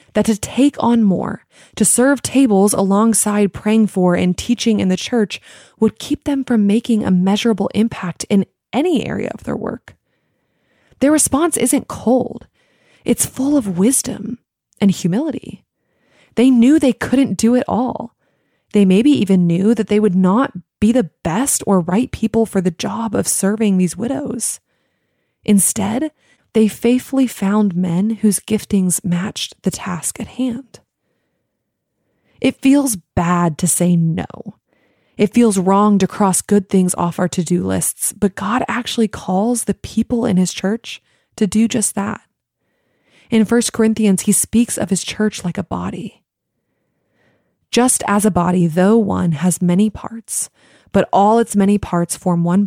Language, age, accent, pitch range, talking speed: English, 20-39, American, 190-235 Hz, 155 wpm